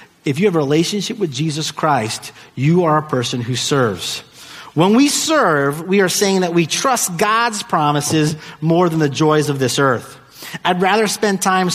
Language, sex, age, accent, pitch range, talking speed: English, male, 30-49, American, 130-195 Hz, 185 wpm